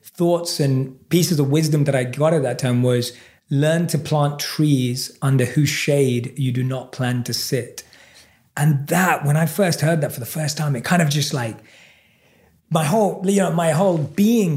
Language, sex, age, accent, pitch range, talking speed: English, male, 30-49, British, 135-170 Hz, 200 wpm